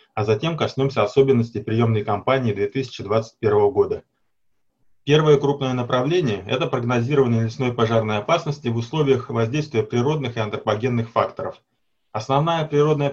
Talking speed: 115 wpm